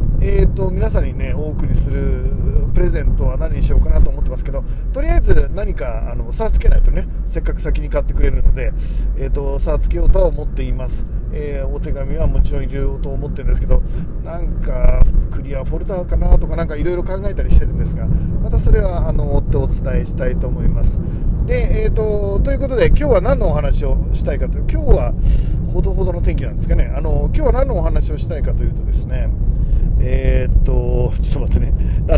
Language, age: Japanese, 40-59